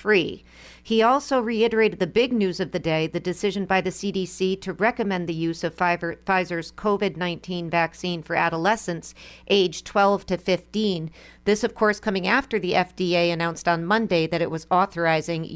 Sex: female